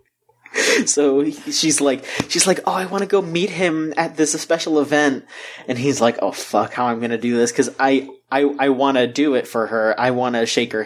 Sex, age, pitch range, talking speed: male, 20-39, 125-145 Hz, 225 wpm